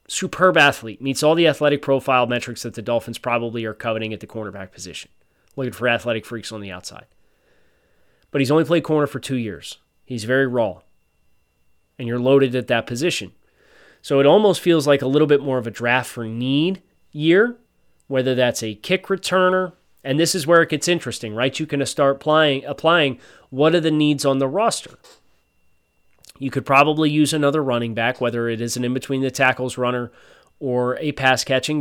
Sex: male